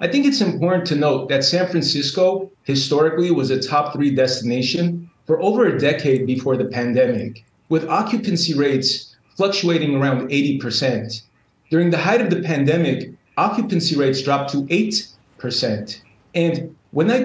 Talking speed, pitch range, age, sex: 145 wpm, 135-180 Hz, 30-49, male